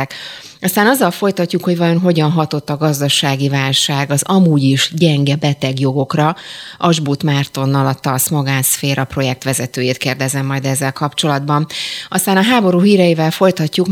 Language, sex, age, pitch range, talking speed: Hungarian, female, 30-49, 140-165 Hz, 135 wpm